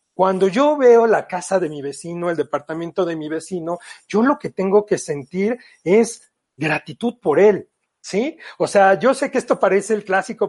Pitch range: 170-220 Hz